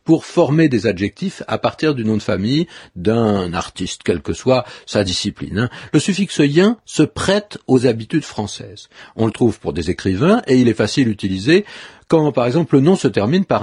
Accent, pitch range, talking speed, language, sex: French, 105-155 Hz, 205 wpm, French, male